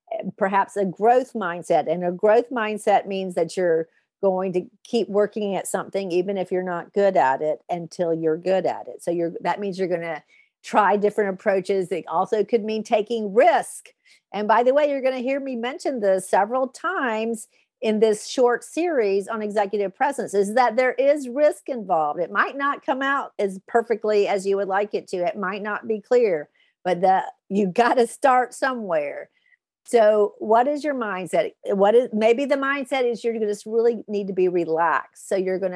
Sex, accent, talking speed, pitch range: female, American, 195 wpm, 180-245 Hz